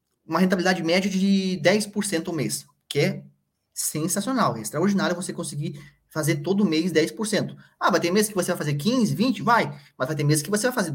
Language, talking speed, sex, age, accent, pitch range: Portuguese, 205 wpm, male, 20-39, Brazilian, 150-200 Hz